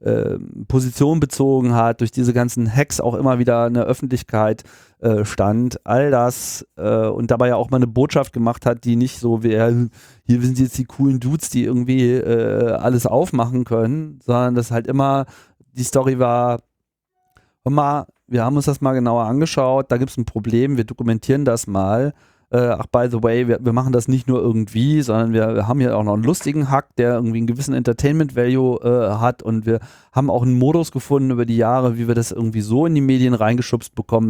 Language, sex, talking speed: German, male, 200 wpm